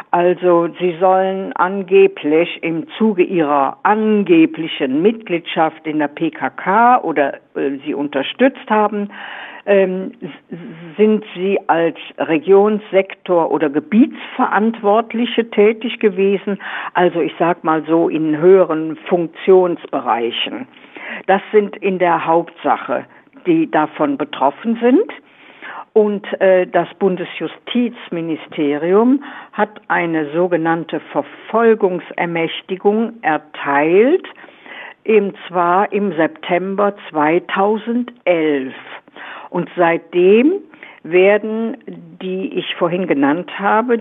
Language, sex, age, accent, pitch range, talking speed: German, female, 60-79, German, 165-210 Hz, 90 wpm